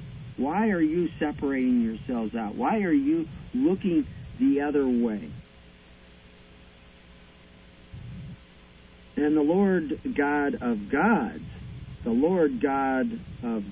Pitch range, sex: 115-170 Hz, male